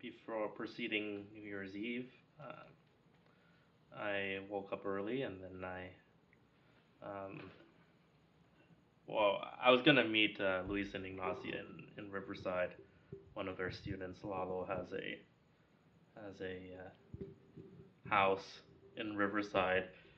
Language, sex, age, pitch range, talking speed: English, male, 20-39, 95-105 Hz, 120 wpm